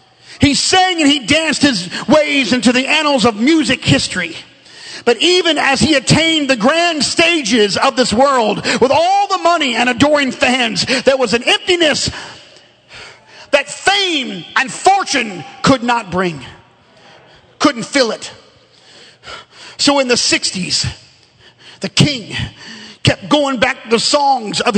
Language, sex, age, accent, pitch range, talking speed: English, male, 40-59, American, 245-315 Hz, 140 wpm